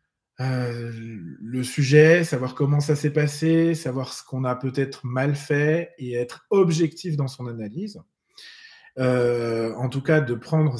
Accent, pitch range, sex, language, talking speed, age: French, 110-140 Hz, male, French, 150 wpm, 20-39